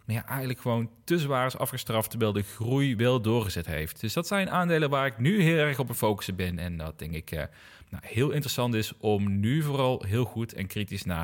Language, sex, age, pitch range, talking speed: Dutch, male, 30-49, 105-140 Hz, 235 wpm